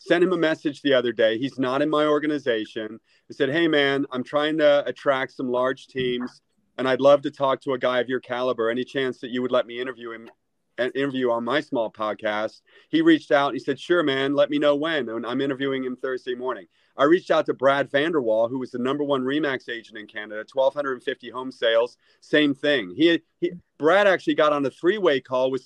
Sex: male